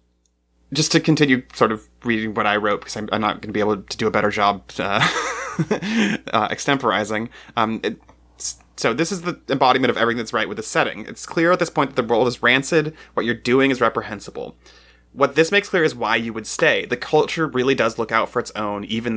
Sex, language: male, English